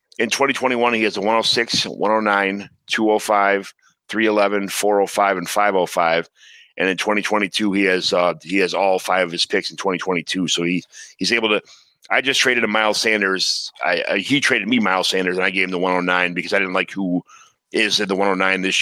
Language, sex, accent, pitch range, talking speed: English, male, American, 95-110 Hz, 195 wpm